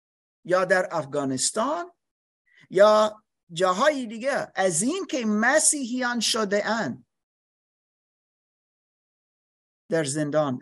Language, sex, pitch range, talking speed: Persian, male, 135-190 Hz, 75 wpm